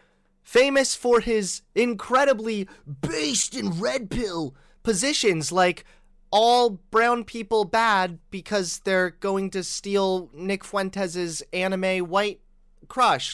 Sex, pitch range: male, 155-225 Hz